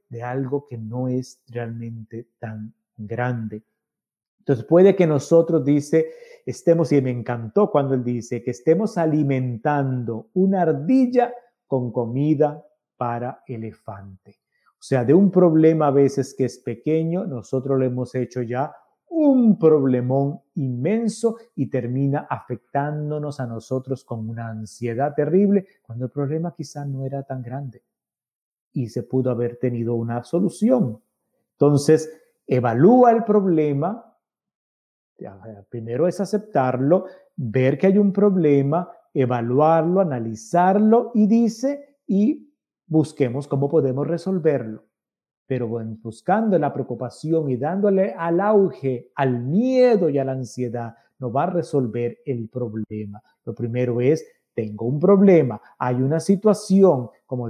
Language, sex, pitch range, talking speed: Spanish, male, 125-180 Hz, 125 wpm